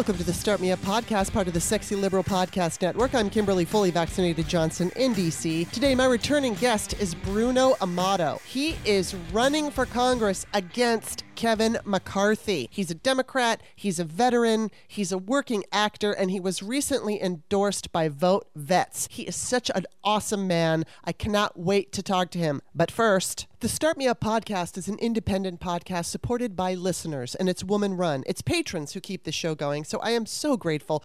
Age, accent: 30-49, American